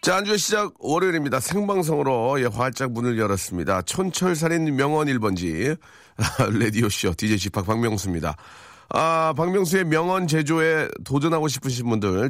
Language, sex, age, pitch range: Korean, male, 40-59, 110-150 Hz